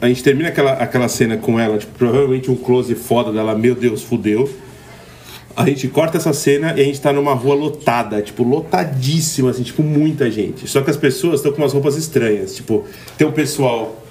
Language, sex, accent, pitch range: Portuguese, male, Brazilian, 120-150 Hz